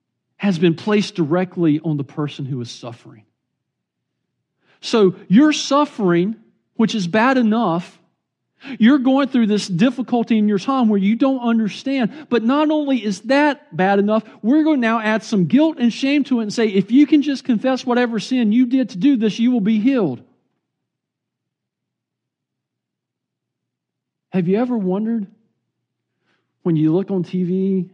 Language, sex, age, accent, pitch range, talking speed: English, male, 40-59, American, 175-255 Hz, 160 wpm